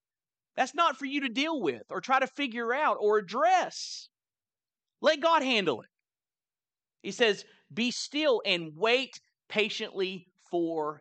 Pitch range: 145-225 Hz